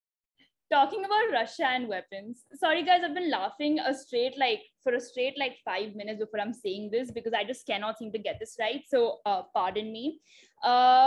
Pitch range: 260-360 Hz